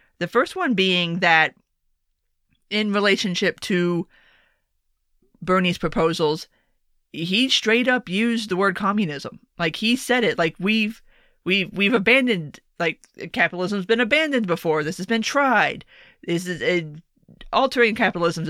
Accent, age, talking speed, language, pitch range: American, 30-49, 130 wpm, English, 170-230 Hz